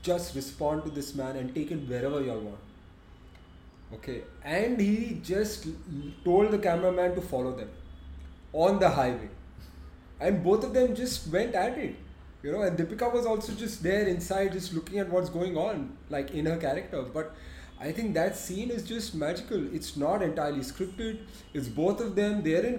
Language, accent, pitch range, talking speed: English, Indian, 120-180 Hz, 185 wpm